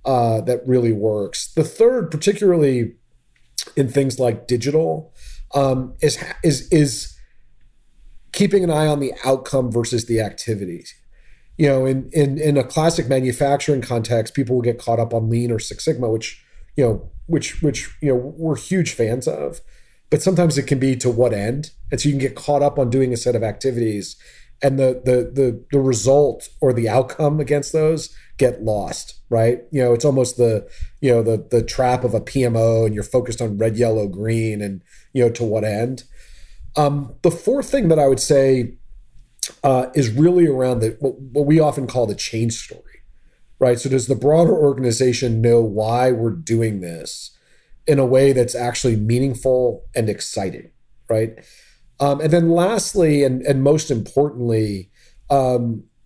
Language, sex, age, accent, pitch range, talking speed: English, male, 30-49, American, 115-145 Hz, 175 wpm